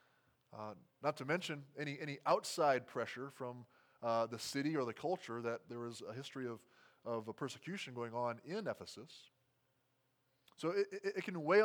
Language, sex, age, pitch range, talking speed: English, male, 20-39, 115-150 Hz, 170 wpm